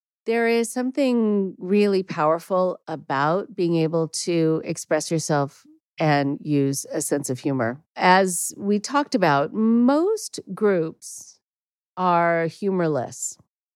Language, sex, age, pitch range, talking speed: English, female, 40-59, 155-200 Hz, 110 wpm